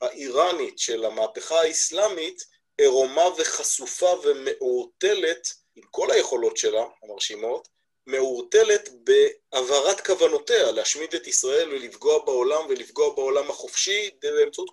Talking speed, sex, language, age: 100 wpm, male, Hebrew, 30-49